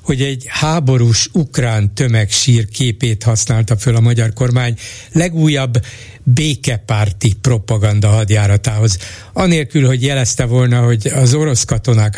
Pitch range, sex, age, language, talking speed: 110-135 Hz, male, 60-79, Hungarian, 115 wpm